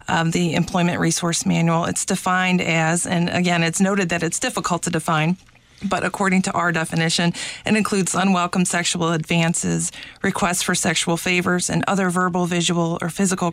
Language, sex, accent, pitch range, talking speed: English, female, American, 160-180 Hz, 165 wpm